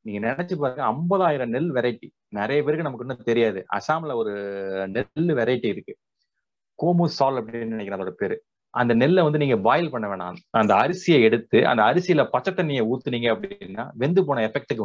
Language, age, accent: Tamil, 30-49, native